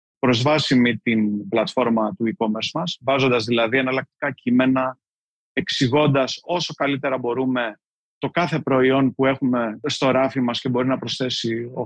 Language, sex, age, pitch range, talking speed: Greek, male, 30-49, 120-180 Hz, 140 wpm